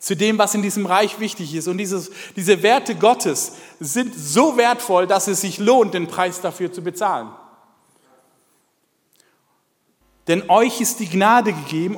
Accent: German